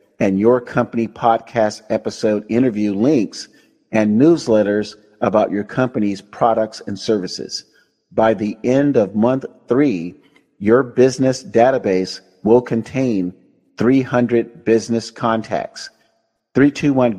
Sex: male